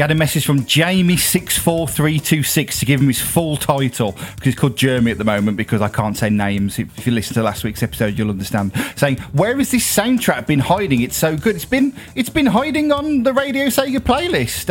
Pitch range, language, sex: 120-165 Hz, English, male